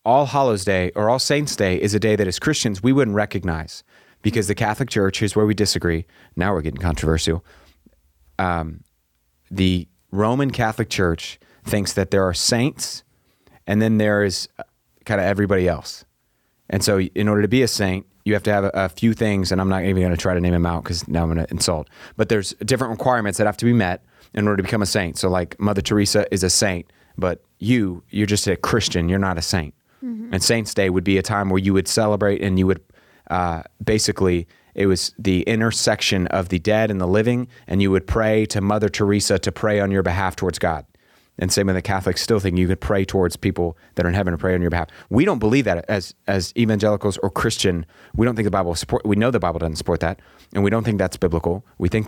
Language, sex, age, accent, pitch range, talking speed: English, male, 30-49, American, 90-105 Hz, 235 wpm